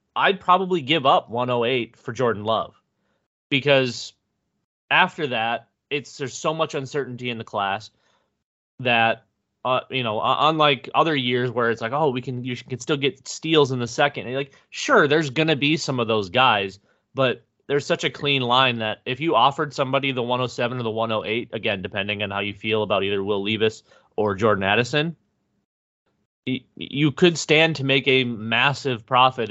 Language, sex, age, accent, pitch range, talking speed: English, male, 30-49, American, 115-145 Hz, 175 wpm